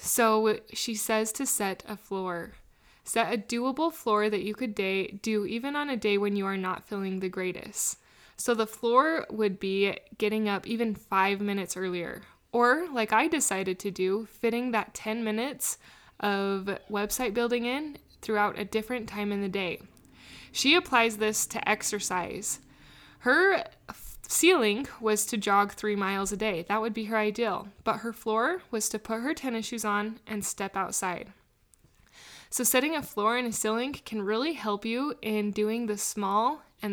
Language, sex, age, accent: English, female, 20-39, American